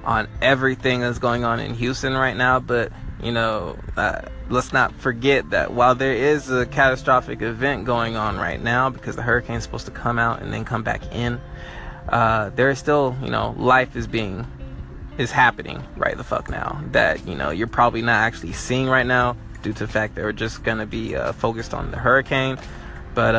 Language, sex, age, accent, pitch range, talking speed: English, male, 20-39, American, 115-150 Hz, 210 wpm